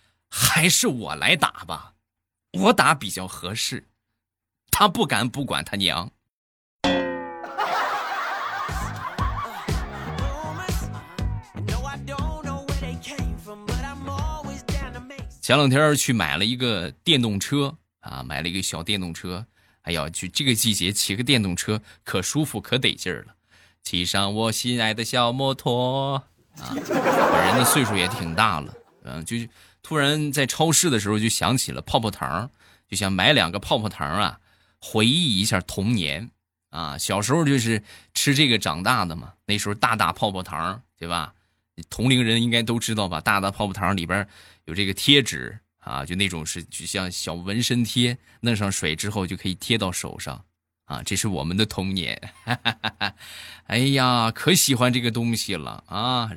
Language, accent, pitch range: Chinese, native, 90-120 Hz